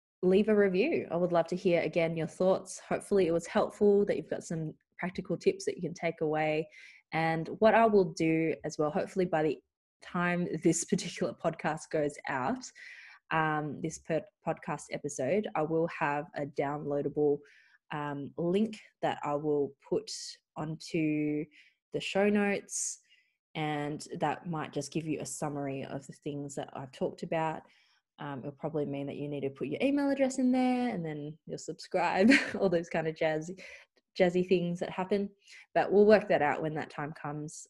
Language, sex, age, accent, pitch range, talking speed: English, female, 20-39, Australian, 150-200 Hz, 180 wpm